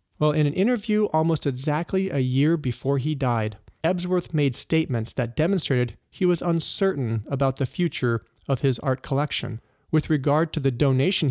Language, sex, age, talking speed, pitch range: English, male, 40-59, 165 wpm, 125-160 Hz